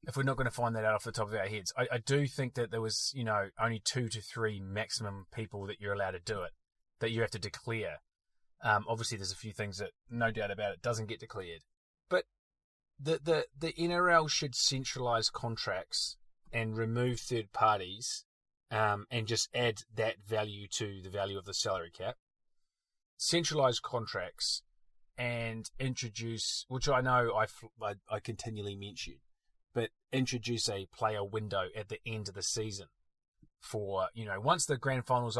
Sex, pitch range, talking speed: male, 105-125 Hz, 185 wpm